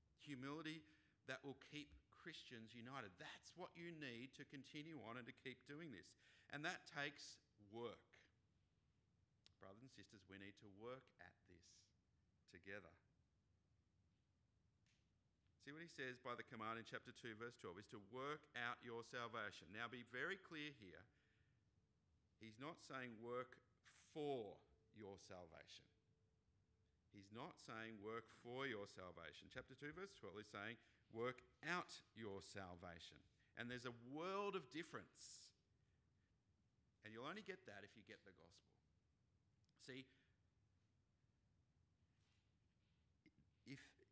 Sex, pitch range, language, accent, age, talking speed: male, 100-130 Hz, English, Australian, 50-69, 130 wpm